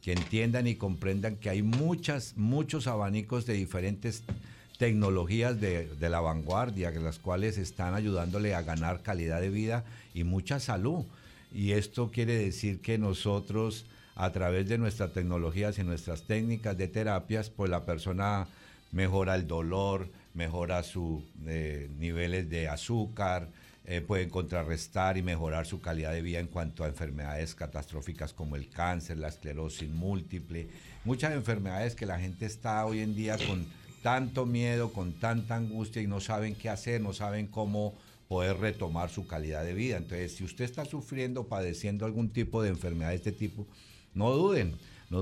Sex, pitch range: male, 85-110 Hz